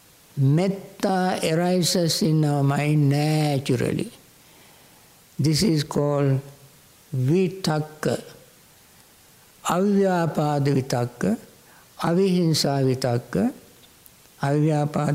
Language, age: English, 60-79